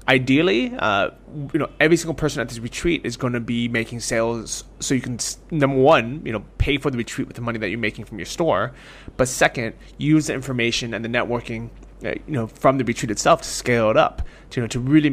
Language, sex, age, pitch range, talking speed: English, male, 20-39, 115-135 Hz, 240 wpm